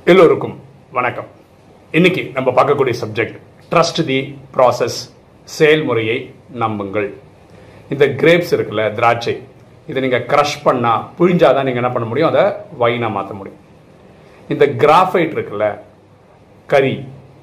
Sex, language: male, Tamil